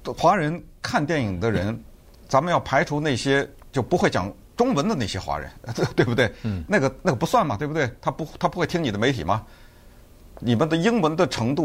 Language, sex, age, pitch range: Chinese, male, 60-79, 110-170 Hz